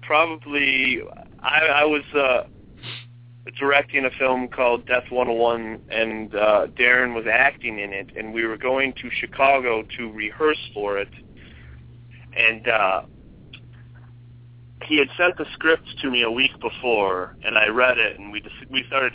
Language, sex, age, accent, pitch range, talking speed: English, male, 40-59, American, 105-125 Hz, 160 wpm